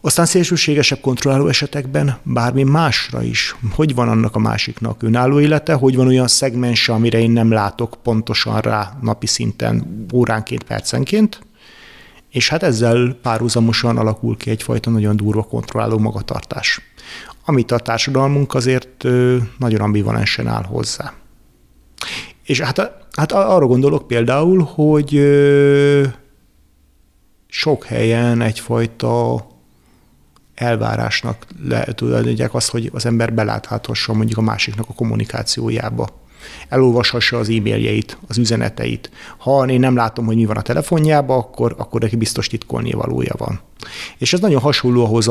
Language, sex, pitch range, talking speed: Hungarian, male, 110-135 Hz, 125 wpm